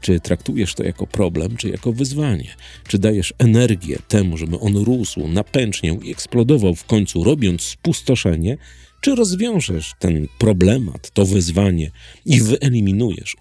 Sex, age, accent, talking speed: male, 40-59, native, 135 wpm